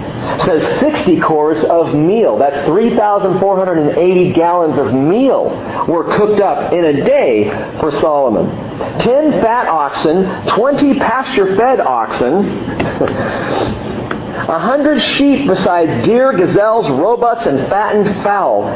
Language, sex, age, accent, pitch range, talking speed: English, male, 50-69, American, 125-200 Hz, 130 wpm